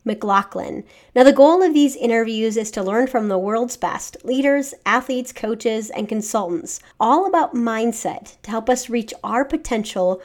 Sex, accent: female, American